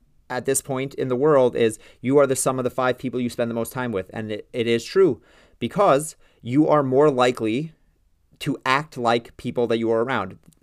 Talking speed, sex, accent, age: 220 wpm, male, American, 30-49